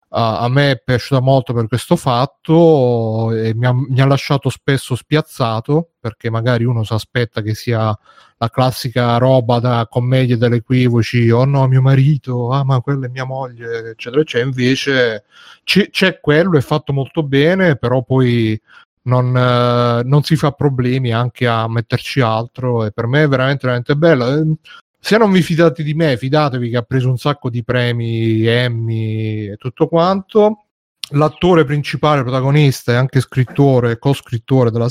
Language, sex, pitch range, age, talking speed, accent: Italian, male, 120-150 Hz, 30-49, 165 wpm, native